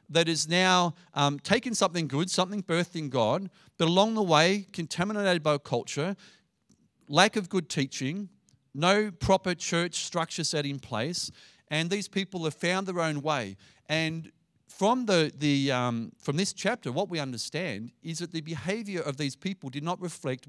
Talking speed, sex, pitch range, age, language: 160 wpm, male, 135-185 Hz, 40-59, English